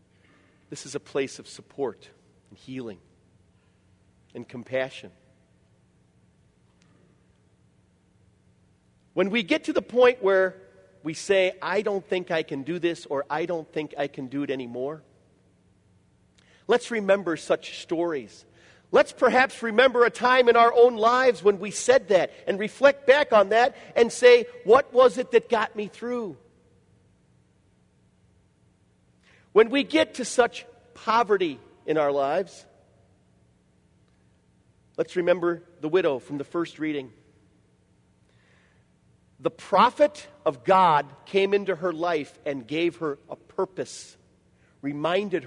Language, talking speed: English, 130 wpm